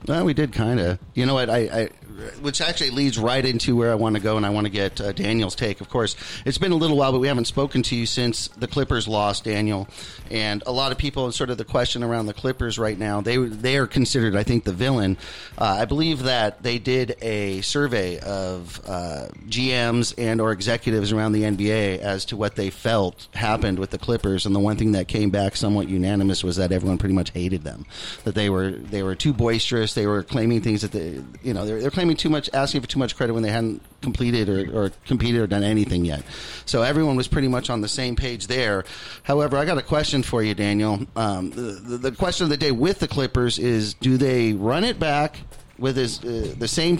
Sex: male